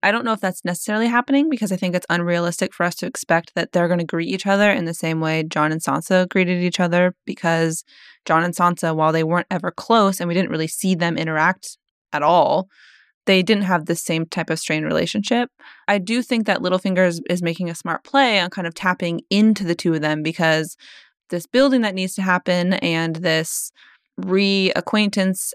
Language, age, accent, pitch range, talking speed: English, 20-39, American, 165-195 Hz, 210 wpm